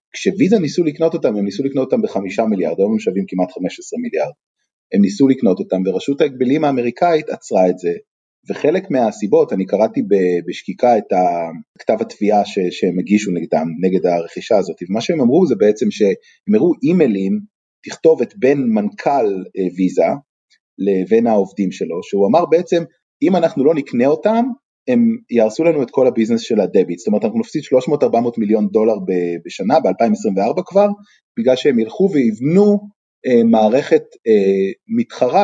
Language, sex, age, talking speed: Hebrew, male, 30-49, 155 wpm